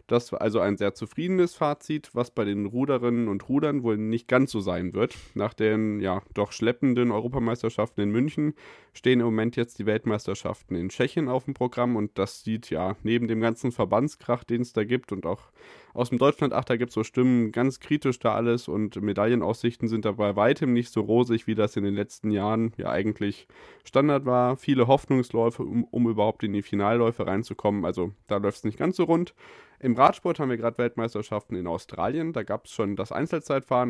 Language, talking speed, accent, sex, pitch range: German, 200 wpm, German, male, 105-130 Hz